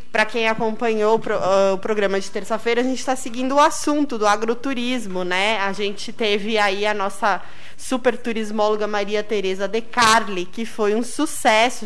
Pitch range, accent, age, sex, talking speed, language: 210-250 Hz, Brazilian, 20-39, female, 160 wpm, Portuguese